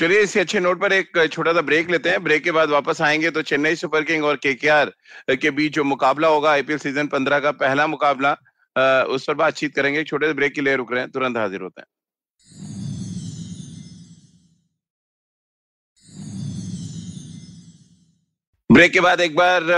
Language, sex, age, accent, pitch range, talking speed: Hindi, male, 40-59, native, 140-165 Hz, 115 wpm